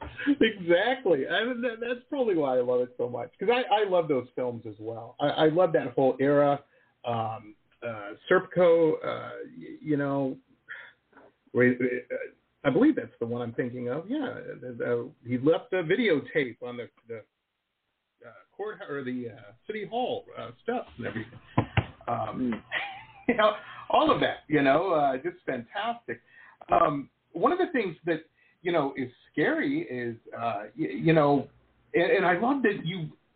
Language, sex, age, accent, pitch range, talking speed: English, male, 50-69, American, 125-200 Hz, 160 wpm